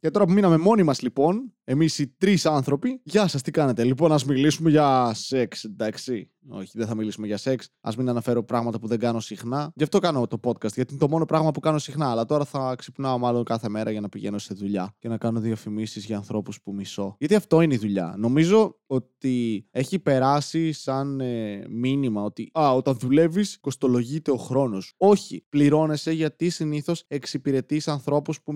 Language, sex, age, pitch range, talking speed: Greek, male, 20-39, 120-150 Hz, 195 wpm